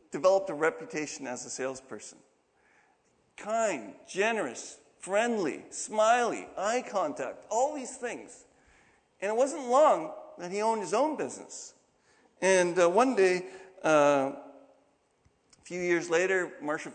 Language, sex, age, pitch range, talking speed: English, male, 50-69, 155-230 Hz, 125 wpm